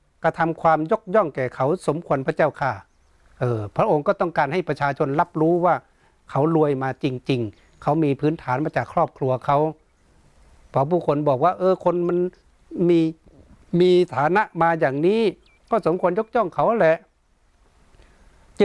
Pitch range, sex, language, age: 130-165 Hz, male, Thai, 60-79